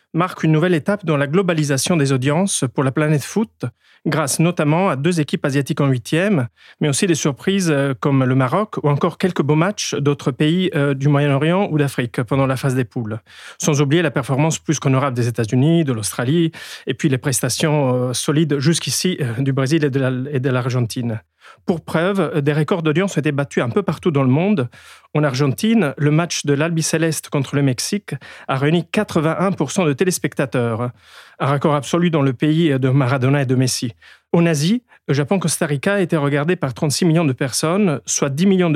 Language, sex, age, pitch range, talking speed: French, male, 40-59, 140-175 Hz, 190 wpm